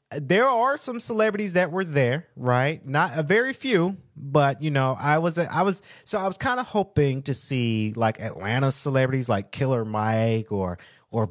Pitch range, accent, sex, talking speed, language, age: 120-160 Hz, American, male, 185 wpm, English, 30-49